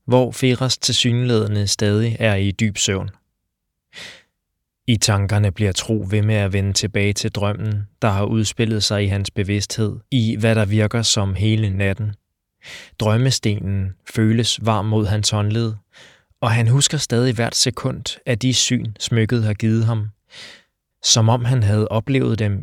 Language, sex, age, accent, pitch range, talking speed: Danish, male, 20-39, native, 105-115 Hz, 155 wpm